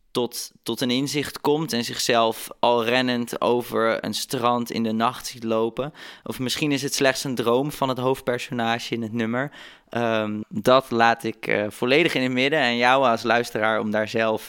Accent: Dutch